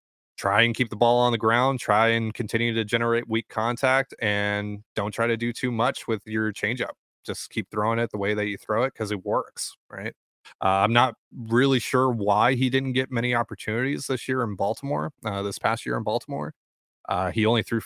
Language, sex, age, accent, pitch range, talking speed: English, male, 20-39, American, 100-120 Hz, 215 wpm